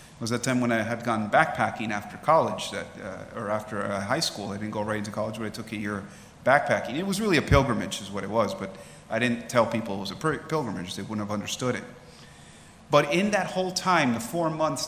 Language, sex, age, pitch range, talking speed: English, male, 30-49, 110-145 Hz, 245 wpm